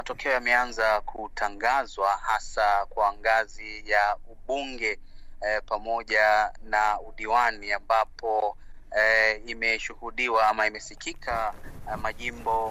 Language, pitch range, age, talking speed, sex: Swahili, 110-120 Hz, 30-49, 90 wpm, male